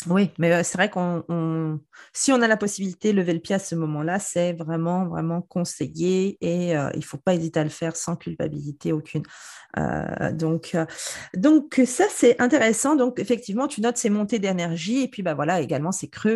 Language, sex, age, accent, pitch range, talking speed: French, female, 40-59, French, 170-250 Hz, 200 wpm